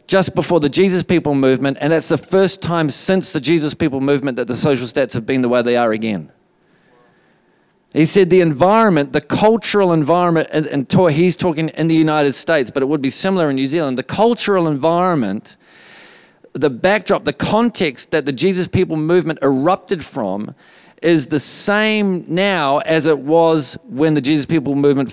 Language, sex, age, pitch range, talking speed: English, male, 40-59, 150-190 Hz, 180 wpm